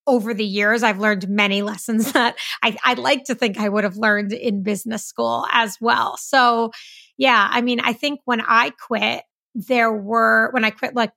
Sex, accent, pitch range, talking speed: female, American, 215-245 Hz, 195 wpm